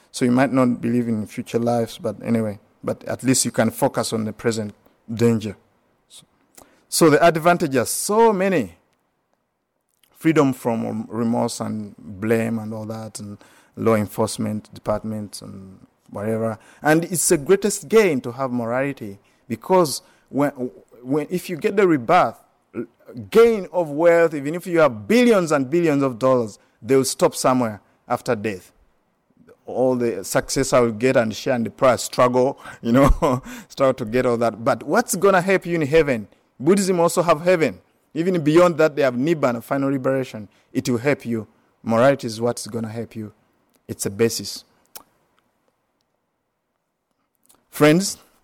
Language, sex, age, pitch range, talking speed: English, male, 50-69, 115-150 Hz, 160 wpm